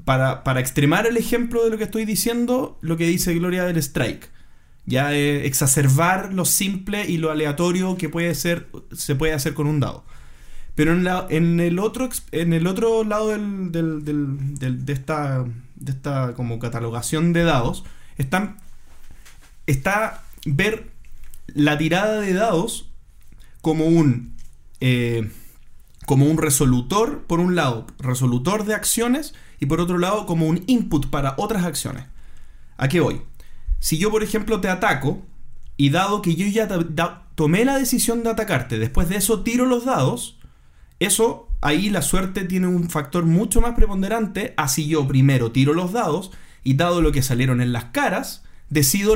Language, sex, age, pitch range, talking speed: Spanish, male, 20-39, 135-200 Hz, 165 wpm